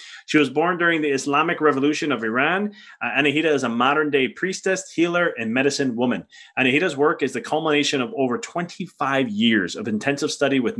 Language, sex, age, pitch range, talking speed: English, male, 30-49, 120-150 Hz, 185 wpm